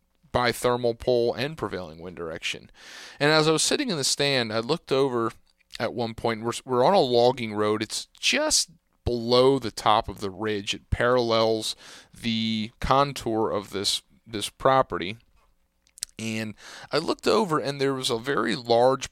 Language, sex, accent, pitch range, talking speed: English, male, American, 110-135 Hz, 165 wpm